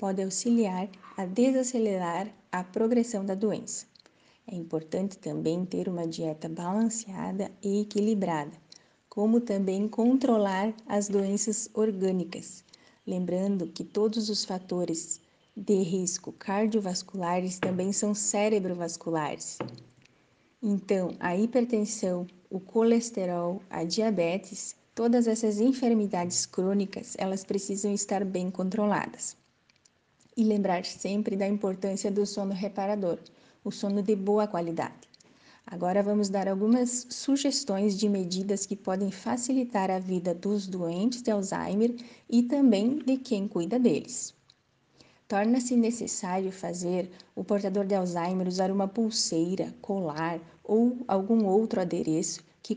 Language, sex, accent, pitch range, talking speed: Portuguese, female, Brazilian, 185-220 Hz, 115 wpm